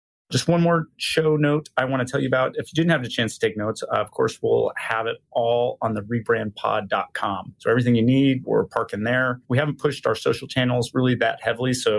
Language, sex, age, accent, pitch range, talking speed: English, male, 30-49, American, 105-130 Hz, 235 wpm